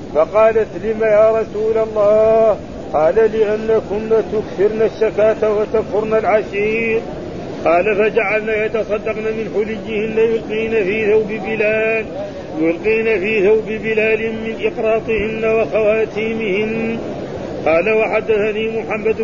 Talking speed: 85 wpm